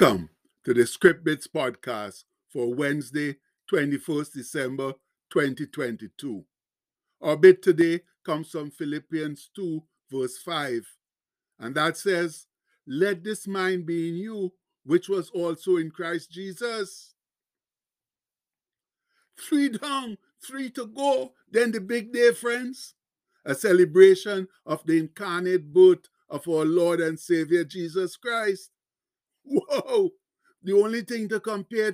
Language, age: English, 50-69